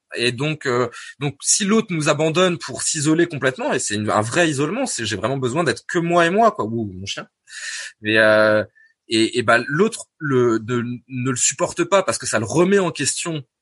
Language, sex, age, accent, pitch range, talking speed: French, male, 20-39, French, 115-180 Hz, 225 wpm